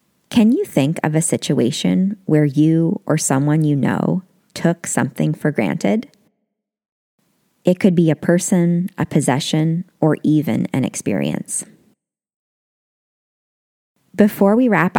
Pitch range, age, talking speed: 150-200 Hz, 20-39, 120 wpm